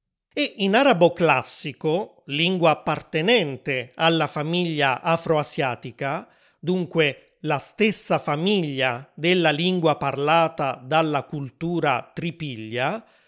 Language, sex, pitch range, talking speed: Italian, male, 145-195 Hz, 85 wpm